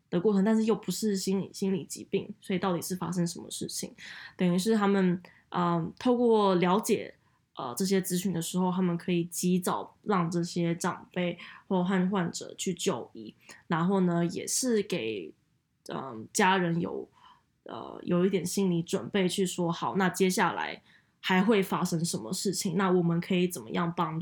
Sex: female